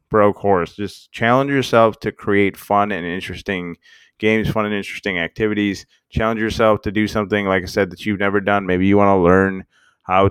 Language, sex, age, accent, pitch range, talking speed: English, male, 20-39, American, 95-120 Hz, 190 wpm